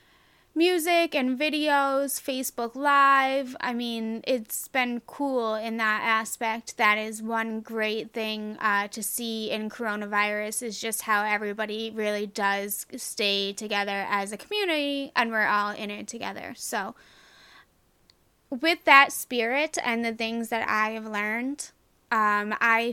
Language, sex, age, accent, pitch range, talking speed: English, female, 20-39, American, 215-255 Hz, 140 wpm